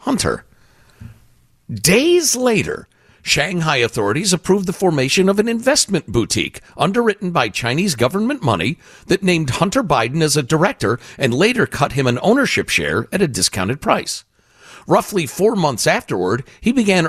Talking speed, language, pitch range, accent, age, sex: 145 wpm, English, 115-175 Hz, American, 50-69, male